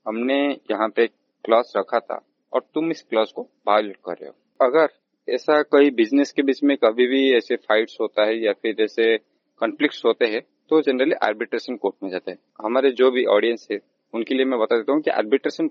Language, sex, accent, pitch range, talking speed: Hindi, male, native, 115-155 Hz, 205 wpm